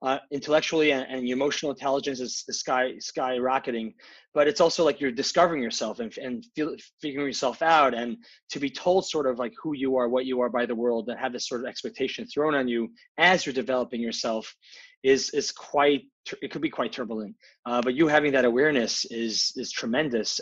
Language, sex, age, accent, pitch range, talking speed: English, male, 20-39, American, 120-150 Hz, 205 wpm